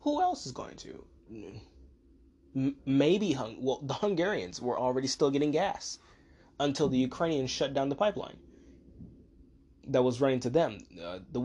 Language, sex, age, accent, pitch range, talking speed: English, male, 20-39, American, 90-145 Hz, 150 wpm